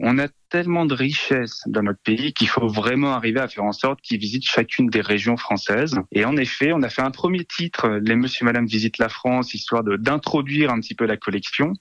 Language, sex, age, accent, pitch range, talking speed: French, male, 30-49, French, 110-140 Hz, 245 wpm